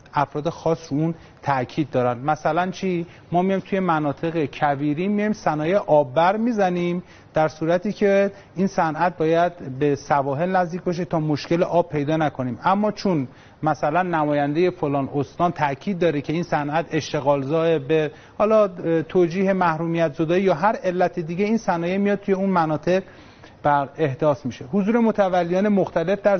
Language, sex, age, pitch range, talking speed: Persian, male, 30-49, 150-185 Hz, 150 wpm